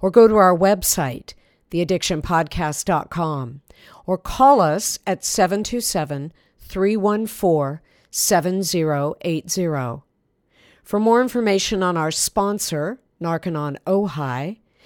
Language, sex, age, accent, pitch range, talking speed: English, female, 50-69, American, 155-205 Hz, 75 wpm